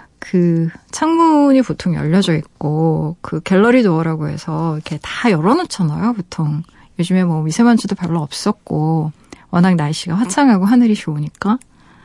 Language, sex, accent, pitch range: Korean, female, native, 165-220 Hz